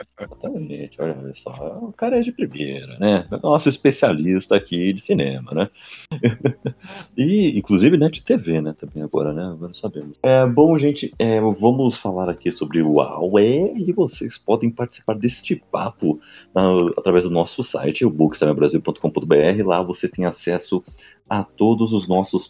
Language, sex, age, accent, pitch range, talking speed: Portuguese, male, 40-59, Brazilian, 80-110 Hz, 150 wpm